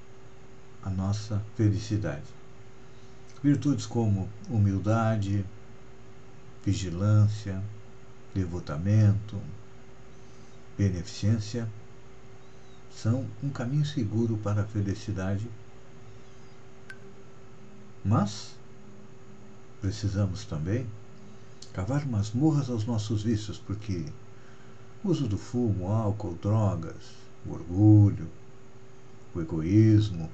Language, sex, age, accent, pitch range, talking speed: Portuguese, male, 60-79, Brazilian, 100-125 Hz, 65 wpm